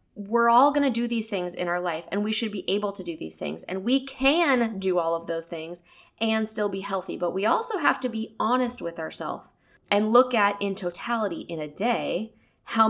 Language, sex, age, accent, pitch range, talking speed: English, female, 20-39, American, 170-235 Hz, 230 wpm